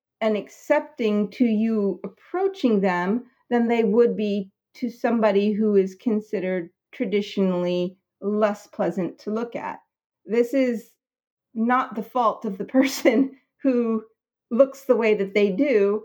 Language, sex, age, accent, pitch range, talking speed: English, female, 50-69, American, 195-250 Hz, 135 wpm